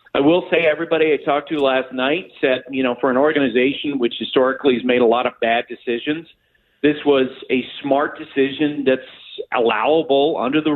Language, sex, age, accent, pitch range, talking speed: English, male, 50-69, American, 130-170 Hz, 185 wpm